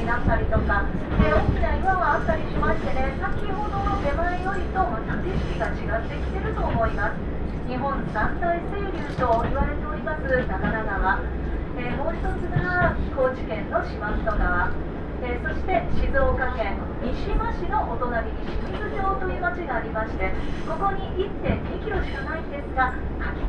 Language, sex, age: Japanese, female, 40-59